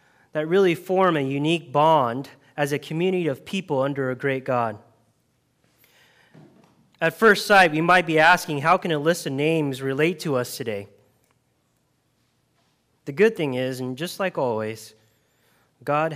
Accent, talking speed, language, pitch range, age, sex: American, 150 wpm, English, 130-180 Hz, 20-39, male